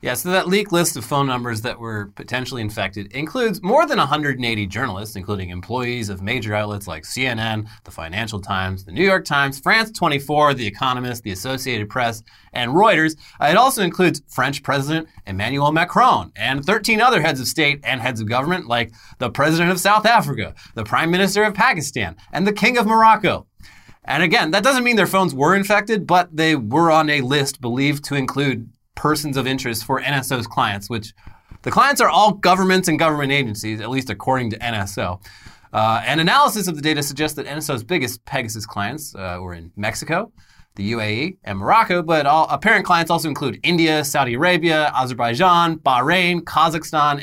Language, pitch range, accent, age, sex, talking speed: English, 115-170 Hz, American, 30-49, male, 180 wpm